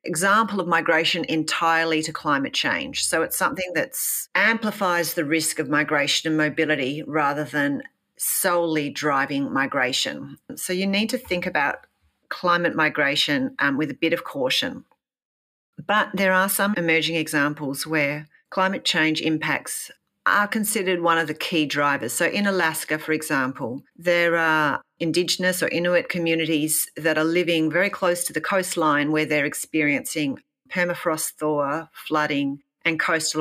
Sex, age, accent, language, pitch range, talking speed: female, 40-59, Australian, English, 150-175 Hz, 145 wpm